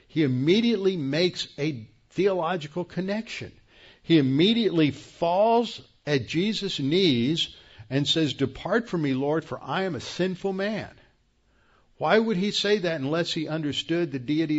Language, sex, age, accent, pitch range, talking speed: English, male, 50-69, American, 130-170 Hz, 140 wpm